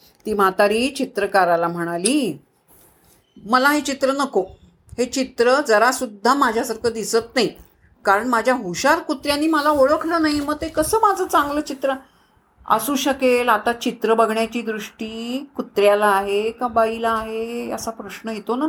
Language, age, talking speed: Marathi, 50-69, 135 wpm